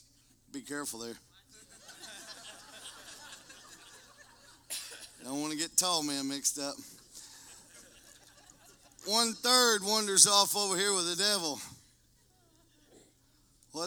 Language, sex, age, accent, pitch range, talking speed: English, male, 40-59, American, 130-175 Hz, 90 wpm